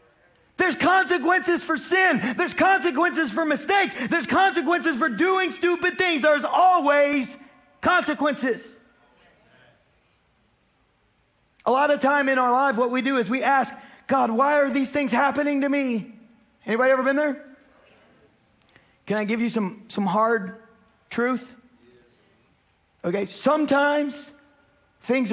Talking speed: 125 wpm